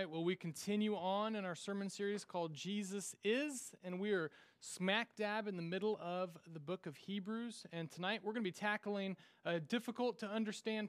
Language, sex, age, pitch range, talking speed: English, male, 30-49, 150-195 Hz, 180 wpm